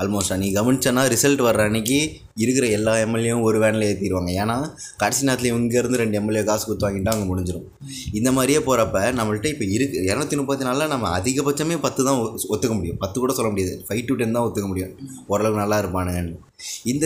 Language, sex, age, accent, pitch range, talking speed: Tamil, male, 20-39, native, 105-135 Hz, 185 wpm